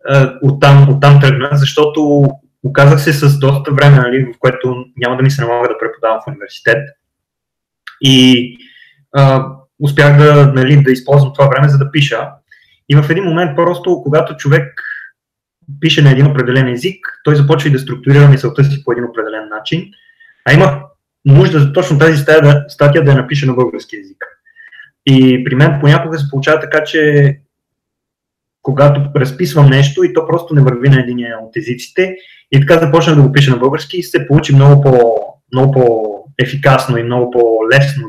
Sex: male